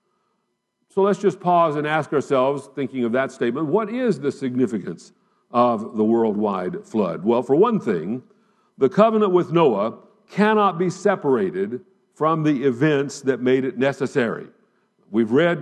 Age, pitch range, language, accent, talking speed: 50-69, 135-190 Hz, English, American, 150 wpm